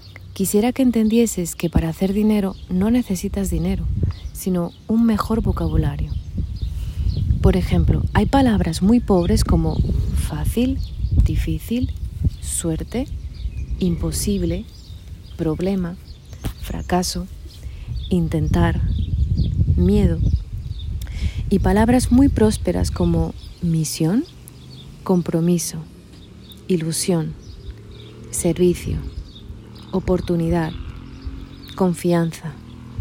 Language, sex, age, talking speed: Spanish, female, 30-49, 75 wpm